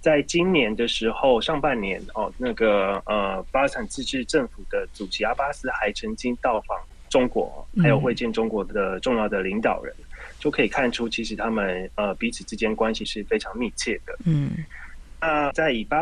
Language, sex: Chinese, male